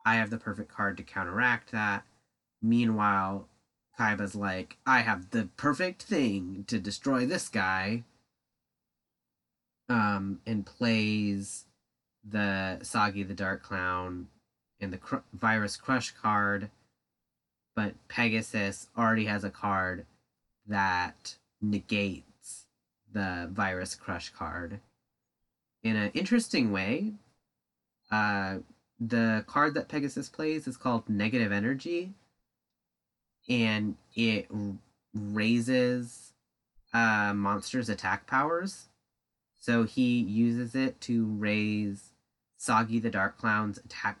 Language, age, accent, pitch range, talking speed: English, 30-49, American, 100-115 Hz, 105 wpm